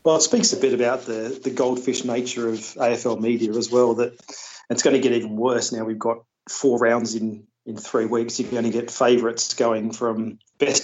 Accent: Australian